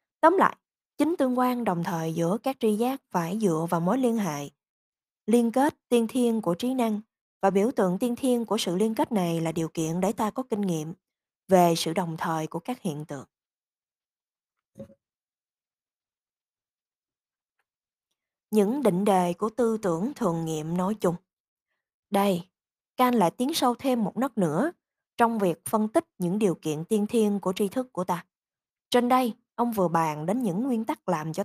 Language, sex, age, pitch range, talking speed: Vietnamese, female, 20-39, 175-240 Hz, 180 wpm